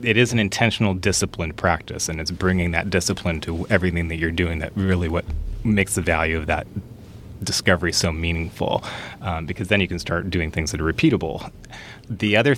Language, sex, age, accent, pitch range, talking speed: English, male, 30-49, American, 85-105 Hz, 190 wpm